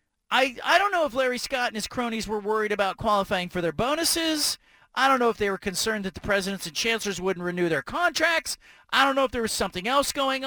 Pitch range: 200-260 Hz